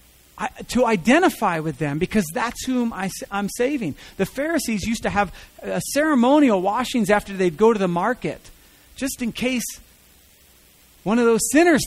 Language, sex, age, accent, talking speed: English, male, 40-59, American, 160 wpm